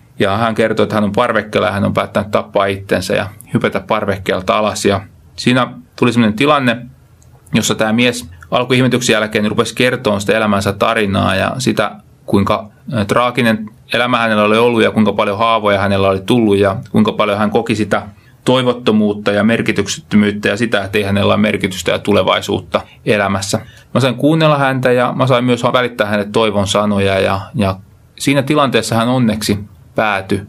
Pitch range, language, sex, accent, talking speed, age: 100-120 Hz, Finnish, male, native, 165 wpm, 30-49